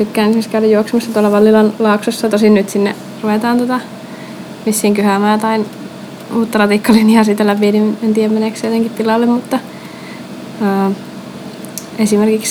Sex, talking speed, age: female, 130 wpm, 20-39